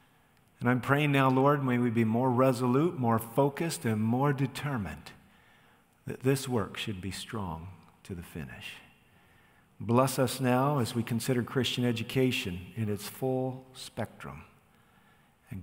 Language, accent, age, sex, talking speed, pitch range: English, American, 50-69, male, 140 wpm, 115-140 Hz